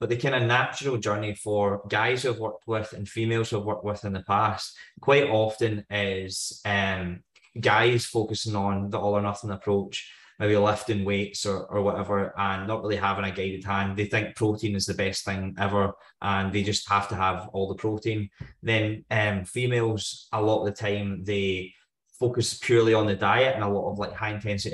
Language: English